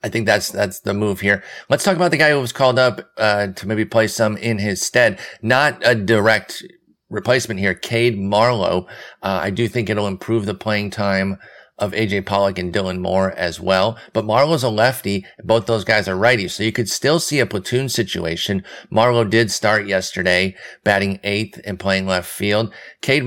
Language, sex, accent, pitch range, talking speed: English, male, American, 95-120 Hz, 195 wpm